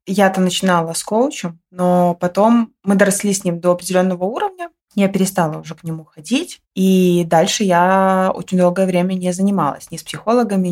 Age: 20-39